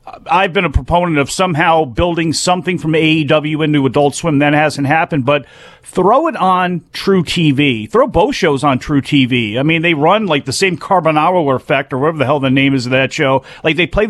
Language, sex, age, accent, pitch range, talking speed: English, male, 40-59, American, 145-185 Hz, 215 wpm